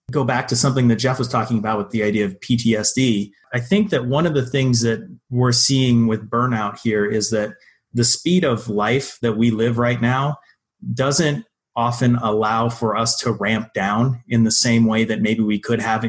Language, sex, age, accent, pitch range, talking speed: English, male, 30-49, American, 110-130 Hz, 205 wpm